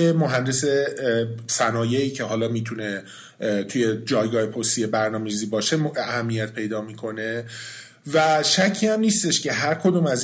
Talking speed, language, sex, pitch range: 125 wpm, Persian, male, 120-155 Hz